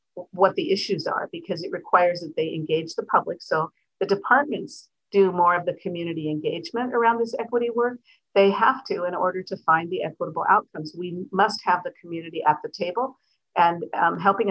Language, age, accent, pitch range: English, 50-69, American, 175-220 Hz